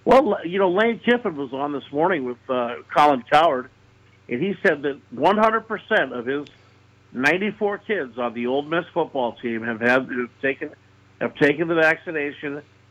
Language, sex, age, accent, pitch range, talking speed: English, male, 50-69, American, 120-160 Hz, 170 wpm